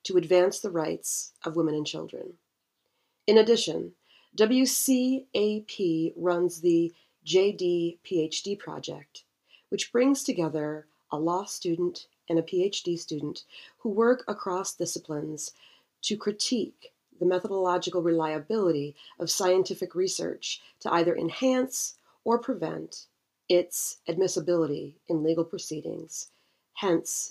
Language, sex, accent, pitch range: English, female, American, 160-210 Hz